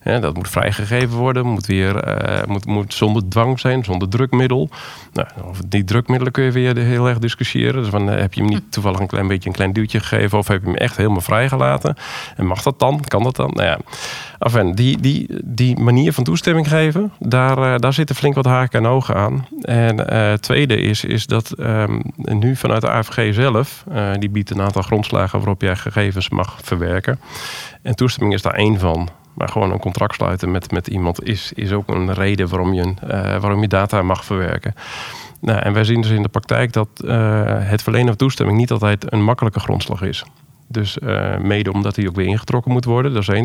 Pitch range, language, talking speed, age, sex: 100-125 Hz, Dutch, 220 wpm, 40-59, male